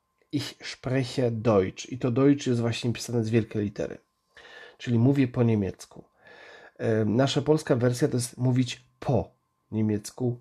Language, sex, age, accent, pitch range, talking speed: Polish, male, 40-59, native, 110-140 Hz, 140 wpm